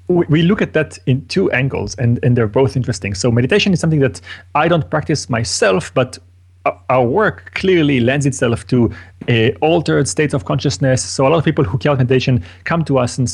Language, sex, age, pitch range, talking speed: English, male, 30-49, 115-145 Hz, 205 wpm